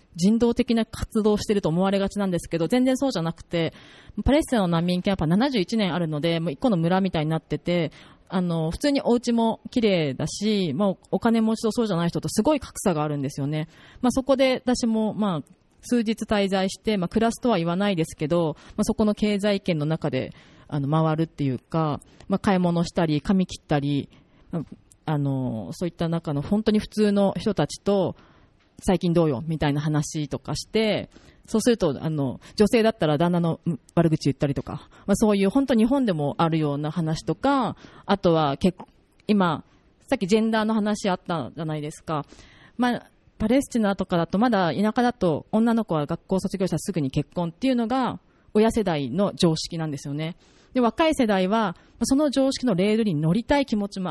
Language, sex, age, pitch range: Japanese, female, 30-49, 160-220 Hz